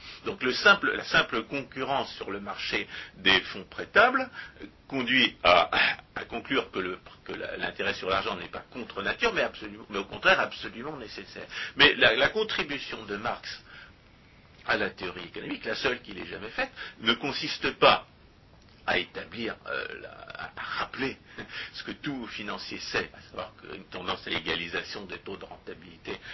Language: French